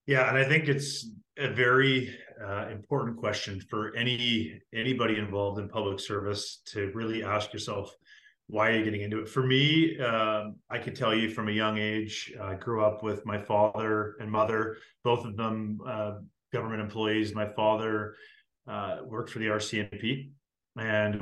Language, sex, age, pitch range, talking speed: English, male, 30-49, 105-120 Hz, 170 wpm